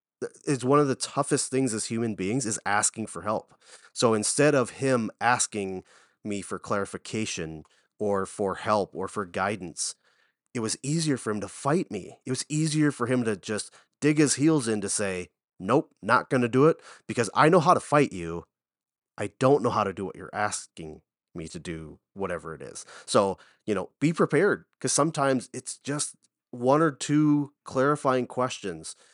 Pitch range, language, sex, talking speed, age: 100-130 Hz, English, male, 185 wpm, 30-49